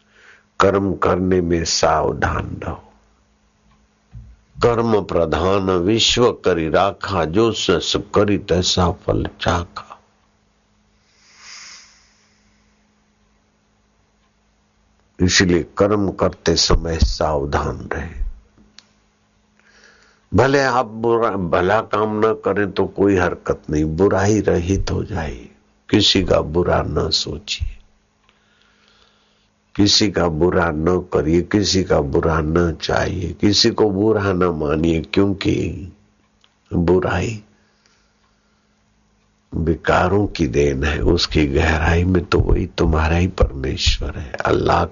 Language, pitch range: Hindi, 85-100 Hz